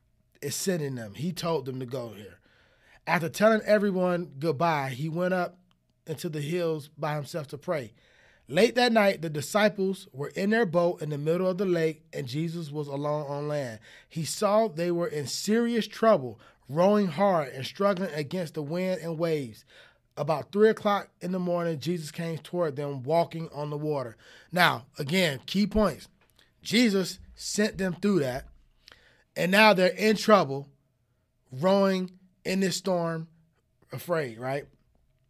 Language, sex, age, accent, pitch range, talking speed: English, male, 30-49, American, 150-195 Hz, 160 wpm